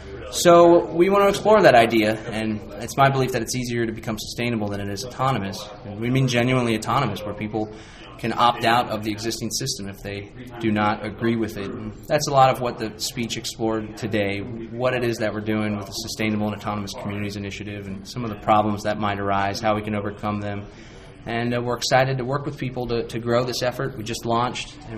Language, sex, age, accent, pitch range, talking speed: English, male, 20-39, American, 110-130 Hz, 225 wpm